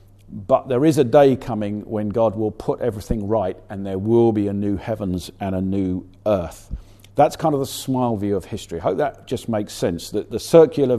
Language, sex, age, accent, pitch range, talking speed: English, male, 50-69, British, 100-130 Hz, 220 wpm